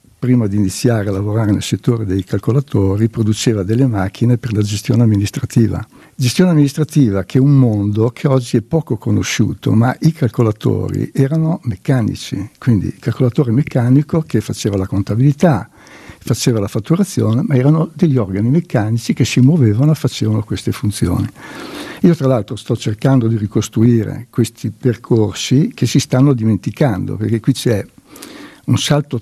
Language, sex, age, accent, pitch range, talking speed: Italian, male, 60-79, native, 110-135 Hz, 150 wpm